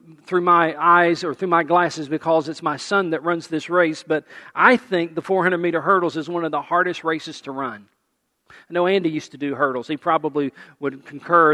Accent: American